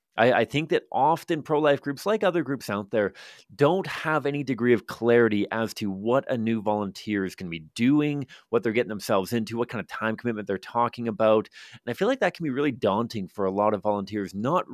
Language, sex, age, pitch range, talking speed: English, male, 30-49, 110-145 Hz, 230 wpm